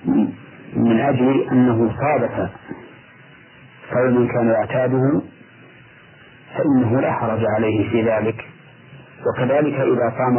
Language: Arabic